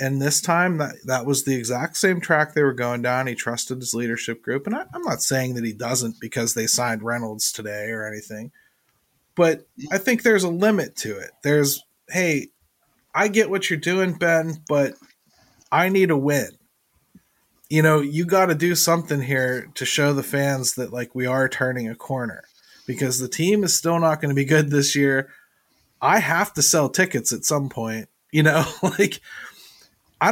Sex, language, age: male, English, 30-49